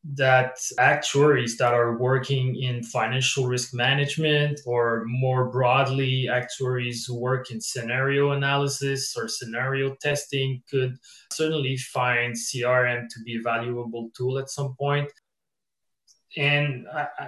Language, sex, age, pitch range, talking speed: English, male, 20-39, 120-140 Hz, 120 wpm